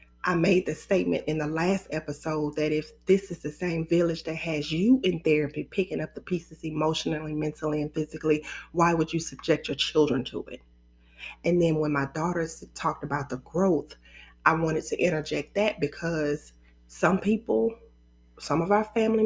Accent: American